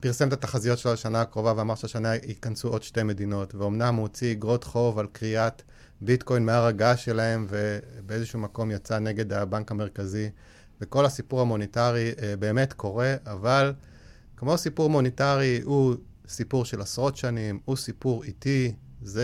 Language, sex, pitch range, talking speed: Hebrew, male, 105-125 Hz, 145 wpm